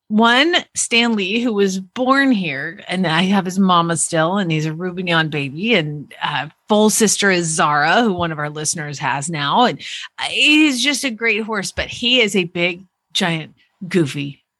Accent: American